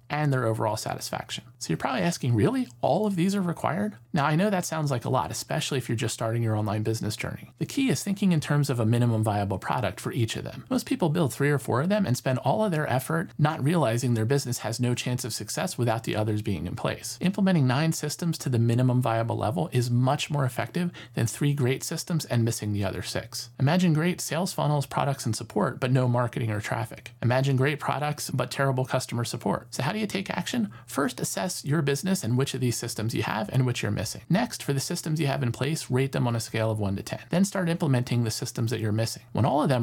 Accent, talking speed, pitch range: American, 245 wpm, 115-150 Hz